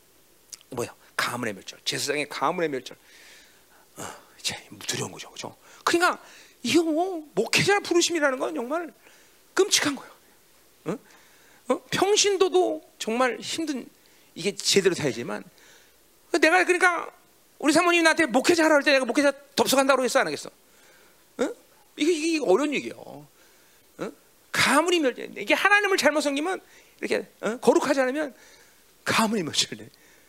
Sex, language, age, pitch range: male, Korean, 40-59, 235-370 Hz